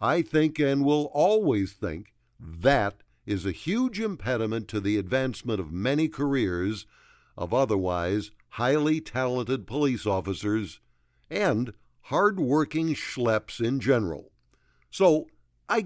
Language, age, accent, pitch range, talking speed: English, 60-79, American, 100-150 Hz, 115 wpm